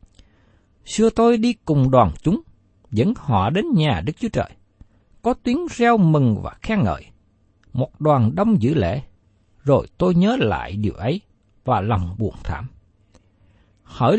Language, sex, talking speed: Vietnamese, male, 150 wpm